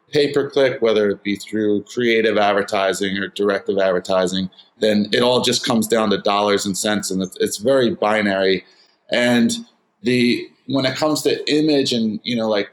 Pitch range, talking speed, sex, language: 110-140 Hz, 165 wpm, male, English